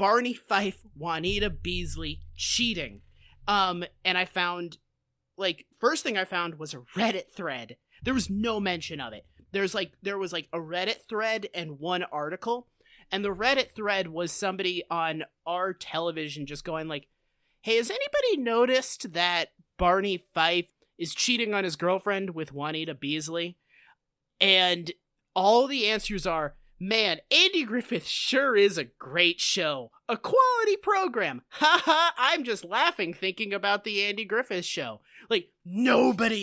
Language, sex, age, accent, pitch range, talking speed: English, male, 30-49, American, 165-220 Hz, 150 wpm